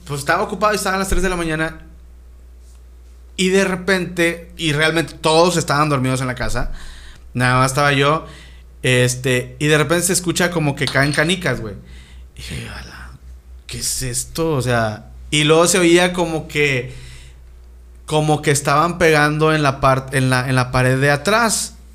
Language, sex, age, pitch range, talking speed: Spanish, male, 40-59, 125-165 Hz, 170 wpm